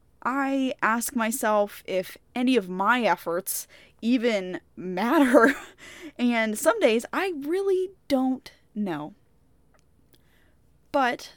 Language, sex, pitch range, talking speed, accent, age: English, female, 175-240 Hz, 95 wpm, American, 10-29